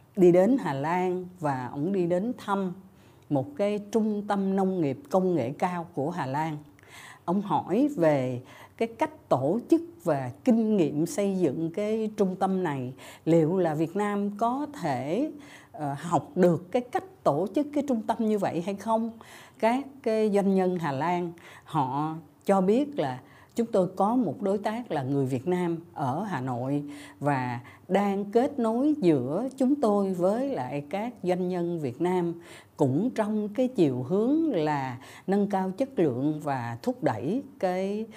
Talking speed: 170 wpm